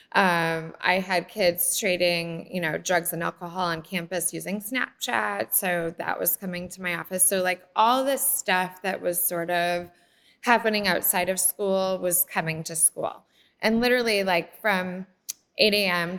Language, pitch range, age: English, 170-205 Hz, 20-39